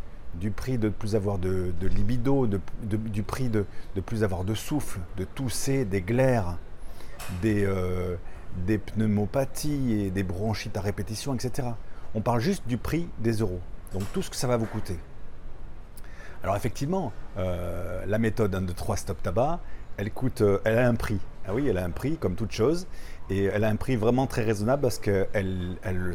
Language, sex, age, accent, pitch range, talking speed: French, male, 40-59, French, 90-110 Hz, 195 wpm